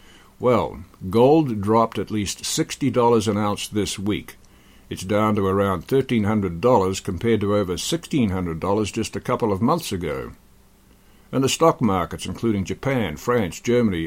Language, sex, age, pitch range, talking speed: English, male, 60-79, 95-120 Hz, 140 wpm